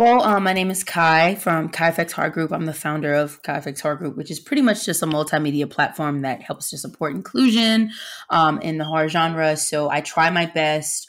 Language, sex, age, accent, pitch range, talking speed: English, female, 20-39, American, 145-175 Hz, 220 wpm